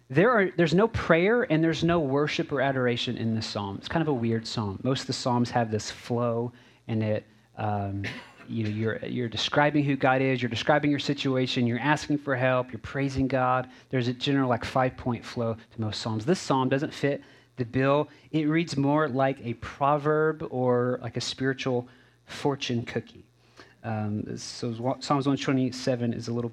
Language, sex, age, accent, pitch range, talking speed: English, male, 30-49, American, 115-135 Hz, 190 wpm